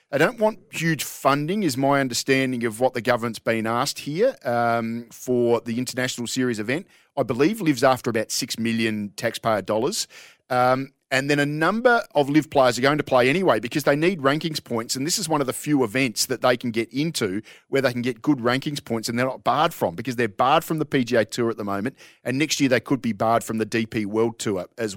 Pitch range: 115-145 Hz